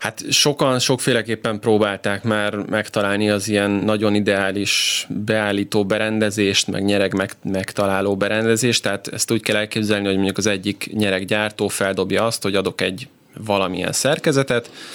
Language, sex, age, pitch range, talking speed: Hungarian, male, 20-39, 100-110 Hz, 135 wpm